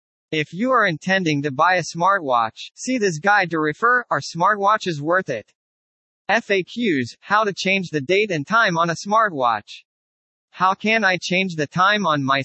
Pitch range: 155-205 Hz